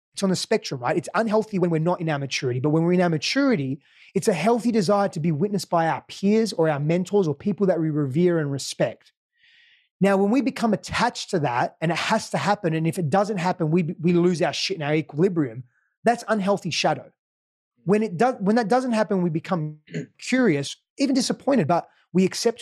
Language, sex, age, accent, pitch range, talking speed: English, male, 20-39, Australian, 155-220 Hz, 220 wpm